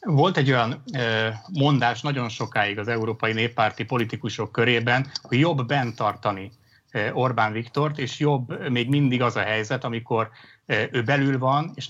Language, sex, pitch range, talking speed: Hungarian, male, 115-140 Hz, 145 wpm